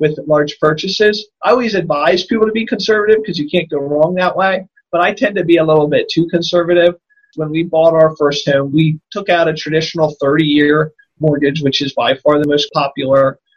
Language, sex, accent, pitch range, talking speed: English, male, American, 150-185 Hz, 210 wpm